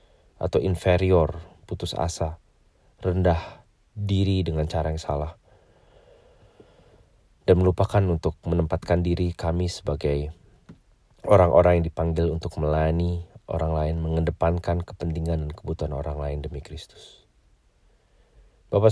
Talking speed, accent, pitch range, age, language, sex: 105 wpm, Indonesian, 75-90 Hz, 30-49, English, male